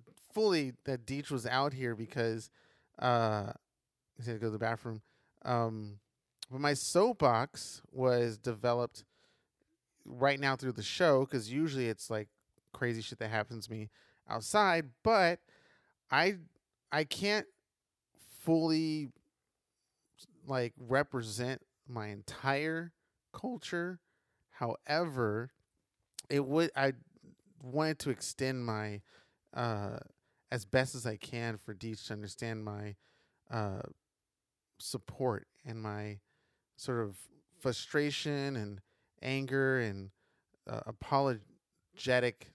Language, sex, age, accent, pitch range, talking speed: English, male, 20-39, American, 110-140 Hz, 110 wpm